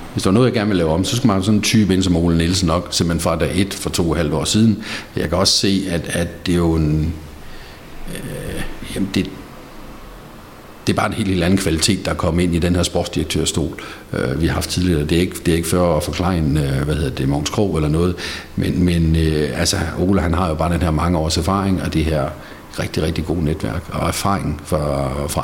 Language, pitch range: Danish, 80-100 Hz